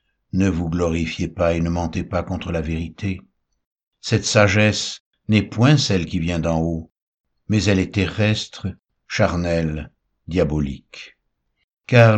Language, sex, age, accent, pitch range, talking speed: French, male, 60-79, French, 80-105 Hz, 135 wpm